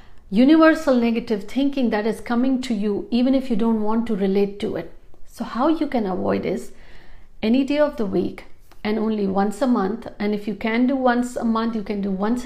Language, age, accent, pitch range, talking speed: Hindi, 50-69, native, 205-260 Hz, 215 wpm